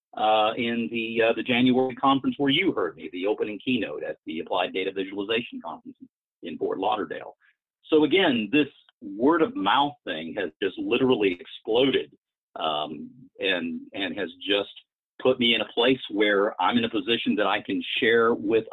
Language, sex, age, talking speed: English, male, 50-69, 175 wpm